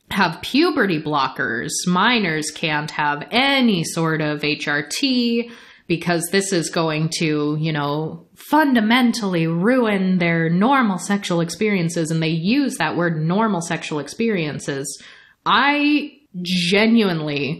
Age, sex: 30-49, female